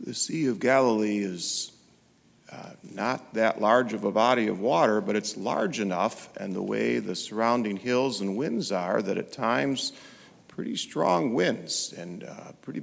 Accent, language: American, English